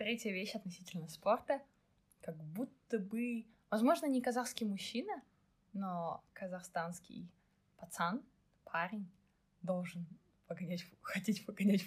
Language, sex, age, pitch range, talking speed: Russian, female, 20-39, 170-205 Hz, 100 wpm